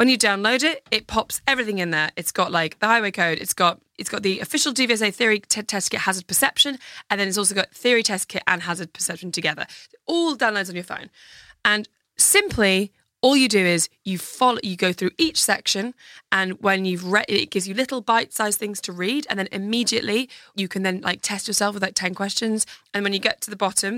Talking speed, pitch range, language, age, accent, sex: 230 wpm, 190-235 Hz, English, 20-39, British, female